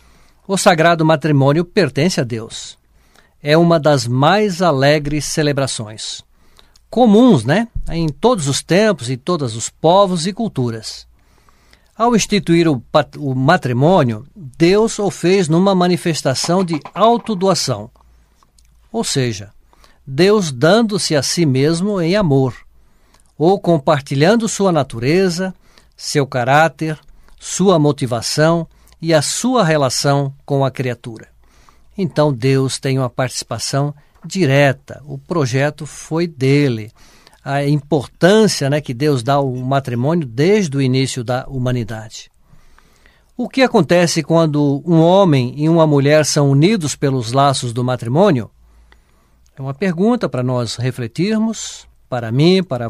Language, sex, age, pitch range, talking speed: Portuguese, male, 60-79, 130-175 Hz, 120 wpm